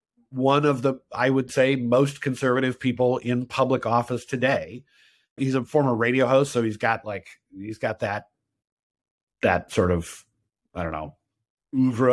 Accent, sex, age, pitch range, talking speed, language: American, male, 50-69, 115-140 Hz, 155 wpm, English